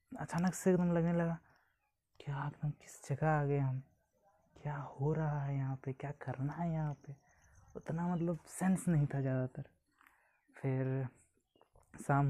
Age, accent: 20-39, native